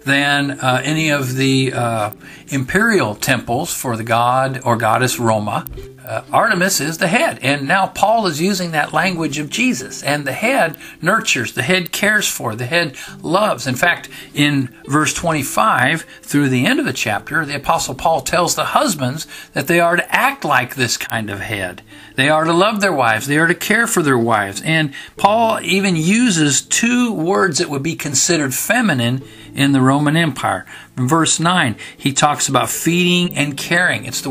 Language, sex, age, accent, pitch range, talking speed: English, male, 50-69, American, 125-160 Hz, 185 wpm